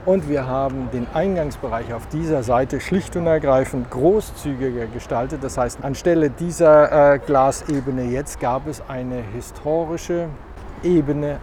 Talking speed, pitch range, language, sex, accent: 130 wpm, 115-145 Hz, German, male, German